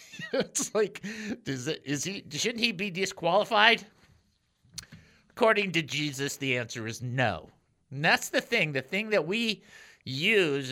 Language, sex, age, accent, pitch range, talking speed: English, male, 50-69, American, 135-195 Hz, 140 wpm